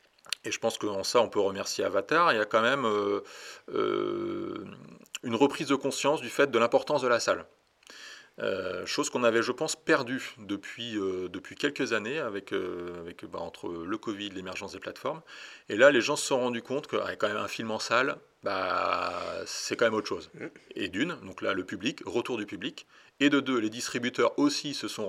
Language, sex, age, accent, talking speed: French, male, 30-49, French, 205 wpm